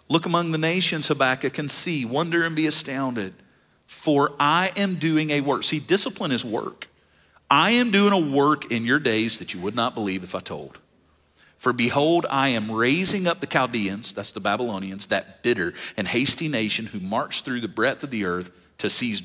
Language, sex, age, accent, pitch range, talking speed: English, male, 50-69, American, 115-170 Hz, 195 wpm